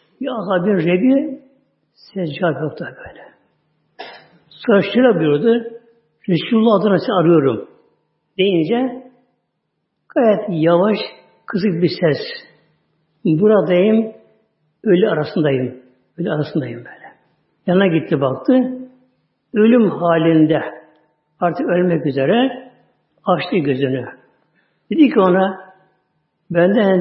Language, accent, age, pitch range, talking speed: Turkish, native, 60-79, 160-235 Hz, 80 wpm